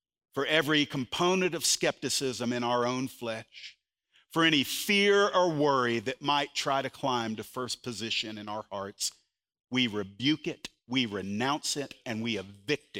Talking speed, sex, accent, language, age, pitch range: 155 wpm, male, American, English, 50-69, 115-165 Hz